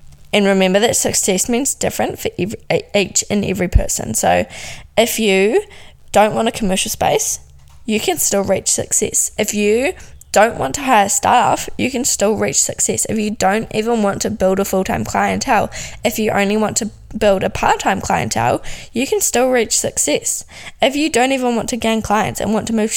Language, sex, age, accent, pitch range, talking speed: English, female, 10-29, Australian, 190-230 Hz, 190 wpm